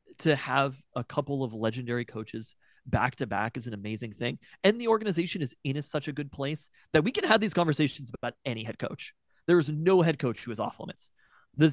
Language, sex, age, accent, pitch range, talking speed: English, male, 30-49, American, 120-155 Hz, 210 wpm